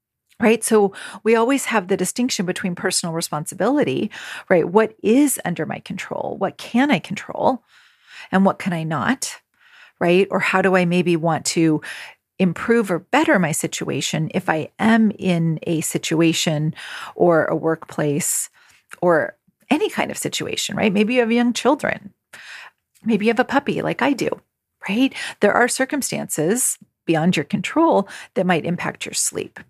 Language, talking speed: English, 160 wpm